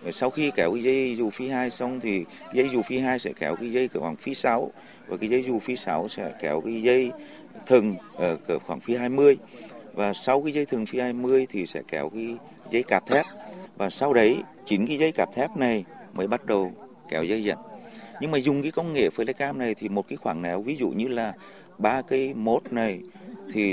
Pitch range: 105-140 Hz